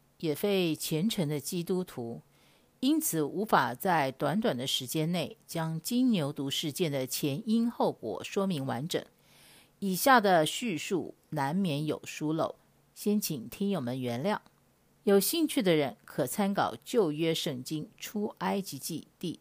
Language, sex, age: Chinese, female, 50-69